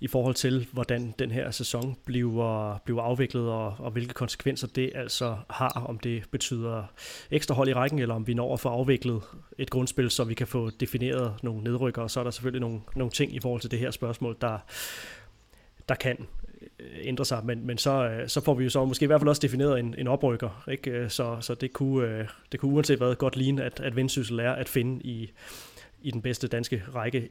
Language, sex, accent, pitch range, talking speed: Danish, male, native, 120-140 Hz, 220 wpm